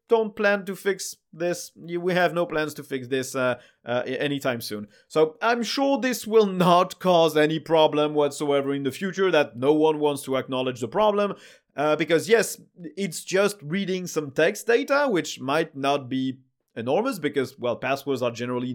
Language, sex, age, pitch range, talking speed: English, male, 30-49, 145-210 Hz, 180 wpm